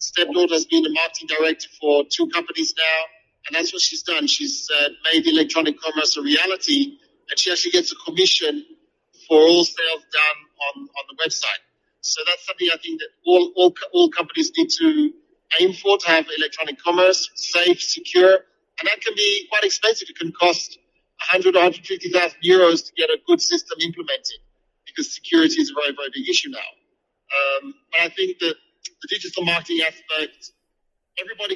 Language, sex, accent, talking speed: English, male, British, 180 wpm